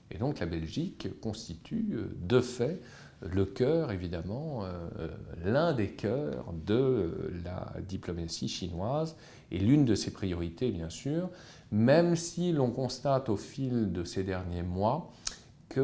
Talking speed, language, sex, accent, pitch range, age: 135 wpm, French, male, French, 90-130 Hz, 40-59